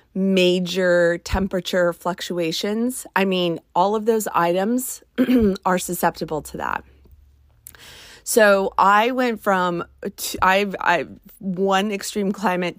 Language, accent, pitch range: English, American, 170-205 Hz